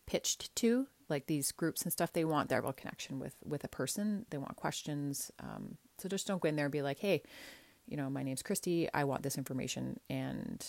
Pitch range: 140-185 Hz